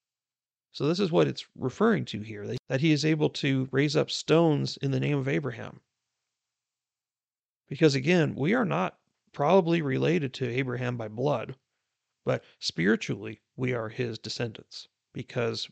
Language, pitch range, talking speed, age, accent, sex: English, 115-140 Hz, 150 wpm, 40-59, American, male